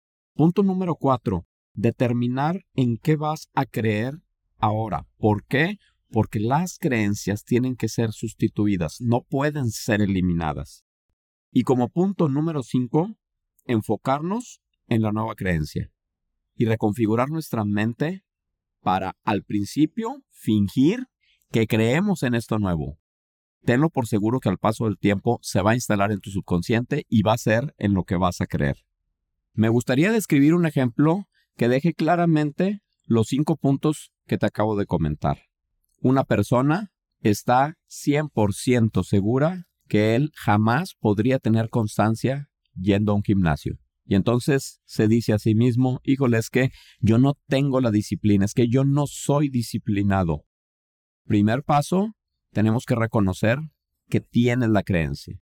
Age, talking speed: 50-69, 145 wpm